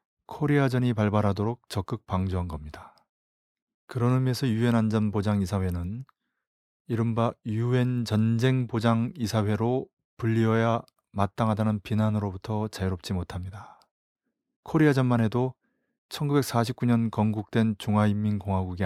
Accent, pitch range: native, 100-120 Hz